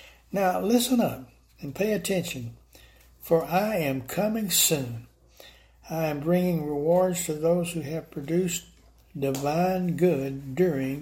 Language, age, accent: English, 60-79, American